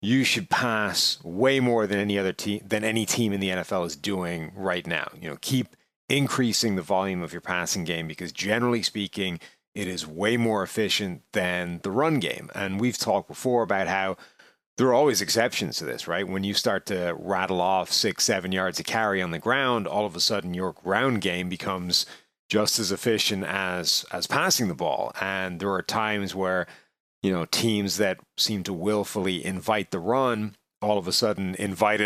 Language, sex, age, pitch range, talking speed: English, male, 30-49, 95-110 Hz, 195 wpm